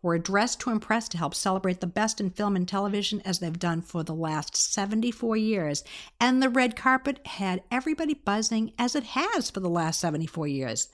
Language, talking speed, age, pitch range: English, 200 wpm, 50-69, 180-230 Hz